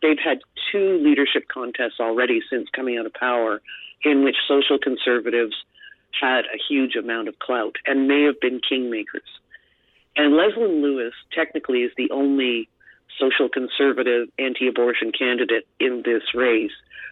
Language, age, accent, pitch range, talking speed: English, 40-59, American, 125-155 Hz, 140 wpm